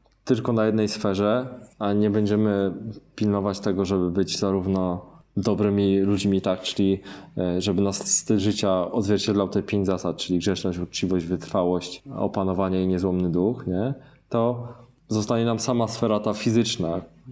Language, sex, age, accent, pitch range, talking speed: Polish, male, 20-39, native, 95-115 Hz, 140 wpm